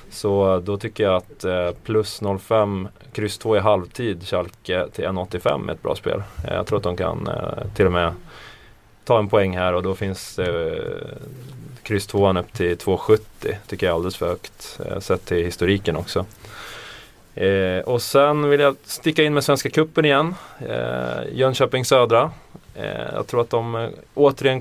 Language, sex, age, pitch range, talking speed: Swedish, male, 20-39, 95-120 Hz, 170 wpm